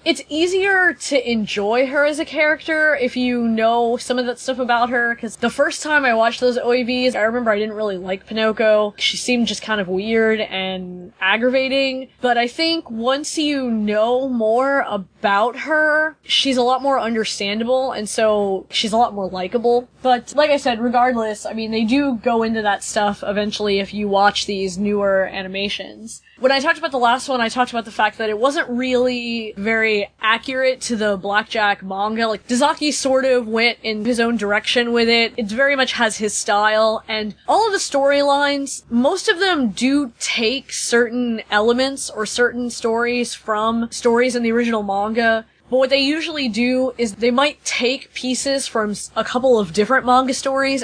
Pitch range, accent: 215-260 Hz, American